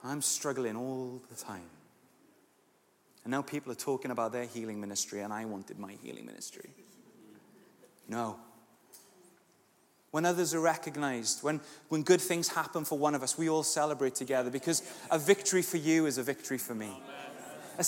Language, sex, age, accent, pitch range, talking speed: English, male, 30-49, British, 130-180 Hz, 165 wpm